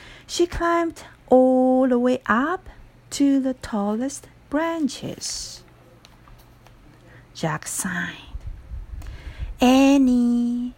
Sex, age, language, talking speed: female, 50-69, English, 70 wpm